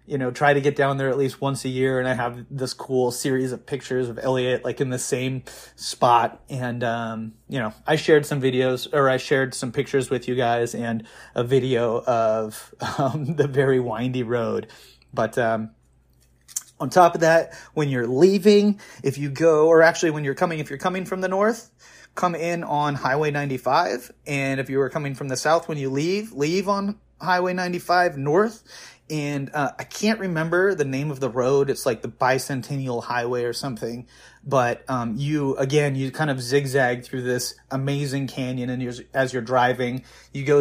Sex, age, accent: male, 30-49, American